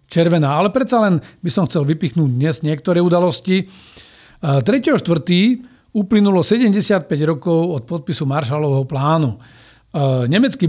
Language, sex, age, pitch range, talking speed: Slovak, male, 50-69, 150-190 Hz, 110 wpm